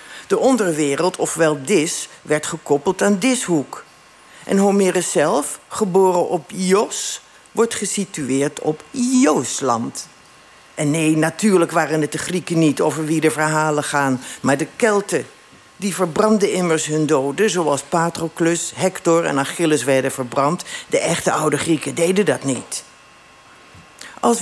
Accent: Dutch